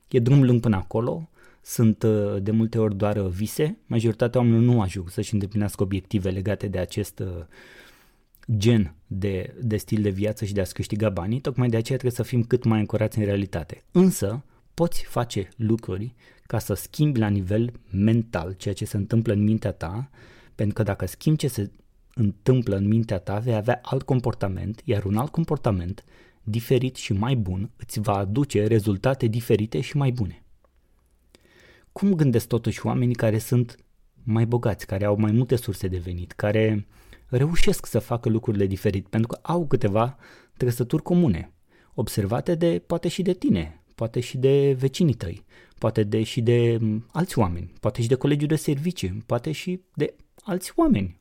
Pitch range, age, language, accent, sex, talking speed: 100-130 Hz, 20-39, Romanian, native, male, 170 wpm